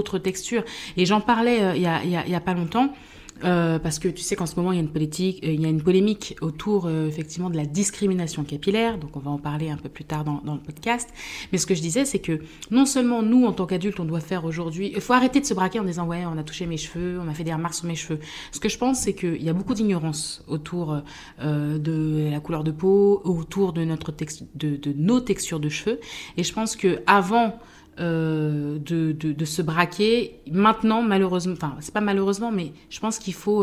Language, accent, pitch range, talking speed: French, French, 160-200 Hz, 250 wpm